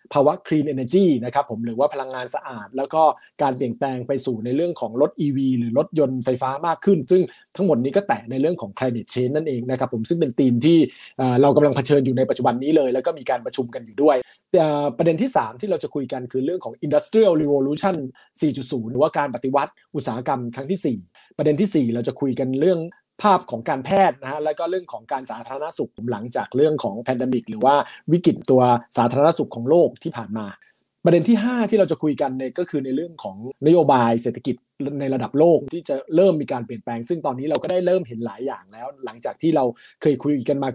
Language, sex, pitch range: Thai, male, 125-160 Hz